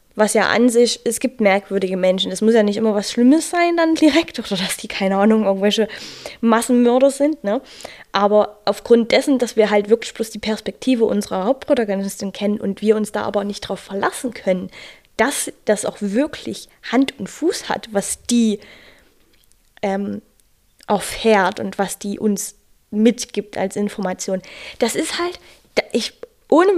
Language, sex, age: German, female, 10-29